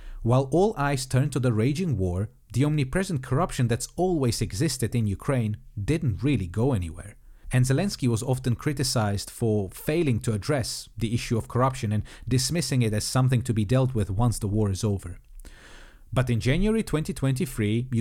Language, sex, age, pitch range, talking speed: English, male, 40-59, 110-135 Hz, 170 wpm